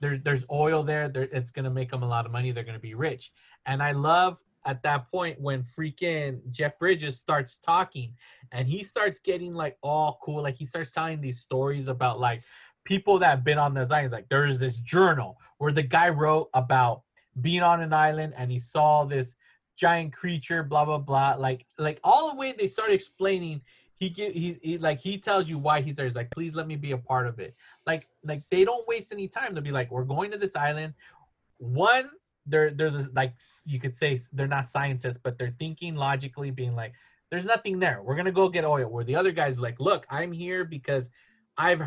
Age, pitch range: 20-39, 130-170 Hz